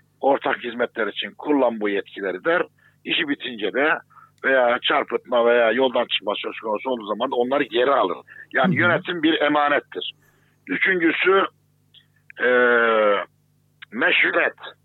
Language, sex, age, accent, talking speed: German, male, 60-79, Turkish, 115 wpm